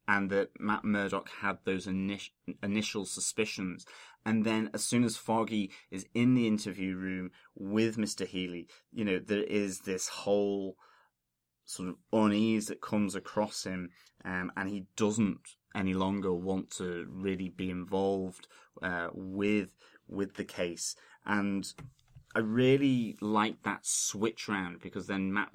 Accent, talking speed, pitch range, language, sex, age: British, 145 wpm, 95-105 Hz, English, male, 20-39